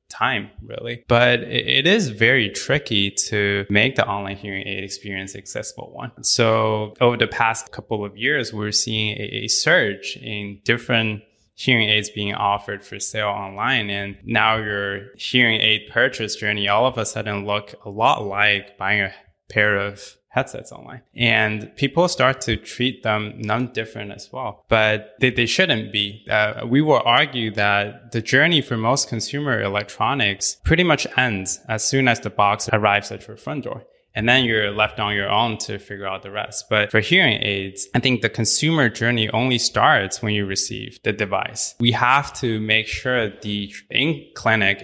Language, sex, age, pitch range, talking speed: English, male, 20-39, 100-120 Hz, 175 wpm